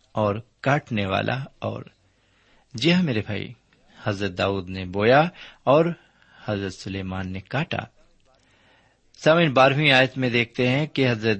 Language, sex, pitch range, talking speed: Urdu, male, 100-130 Hz, 125 wpm